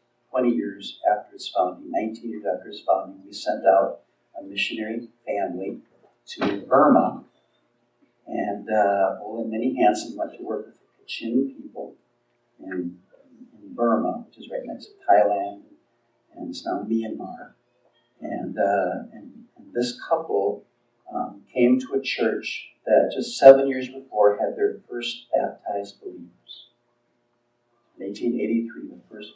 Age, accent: 50-69, American